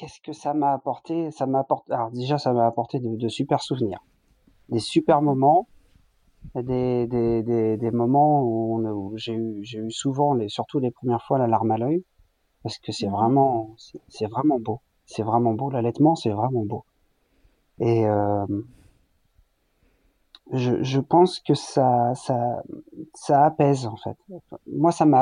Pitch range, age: 115-145 Hz, 40-59